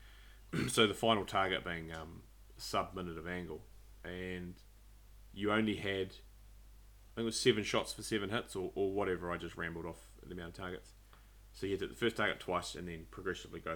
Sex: male